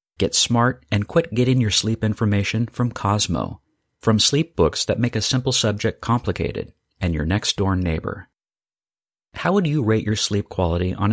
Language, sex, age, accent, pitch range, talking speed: English, male, 50-69, American, 100-125 Hz, 165 wpm